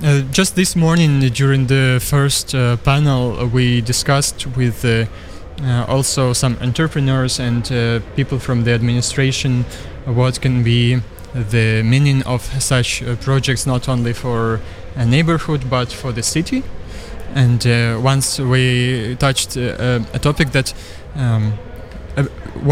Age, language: 20-39, Ukrainian